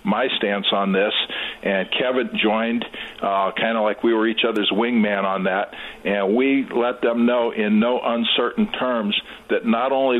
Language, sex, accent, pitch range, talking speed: English, male, American, 105-120 Hz, 175 wpm